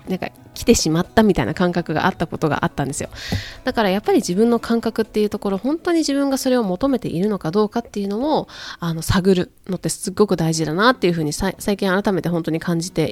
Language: Japanese